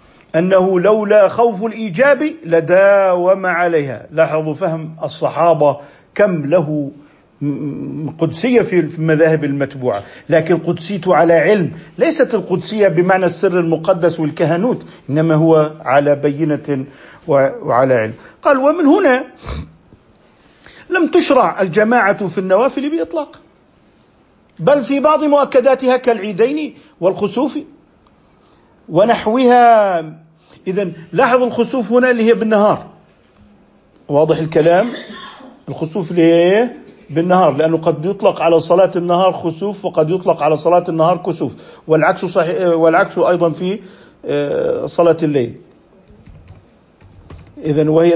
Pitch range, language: 160-230 Hz, Arabic